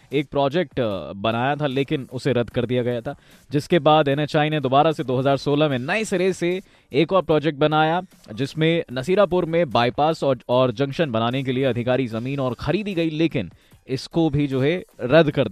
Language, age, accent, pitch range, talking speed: Hindi, 20-39, native, 125-175 Hz, 190 wpm